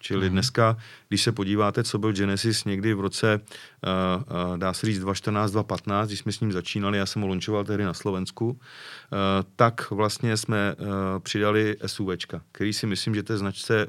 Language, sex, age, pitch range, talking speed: Czech, male, 40-59, 100-110 Hz, 170 wpm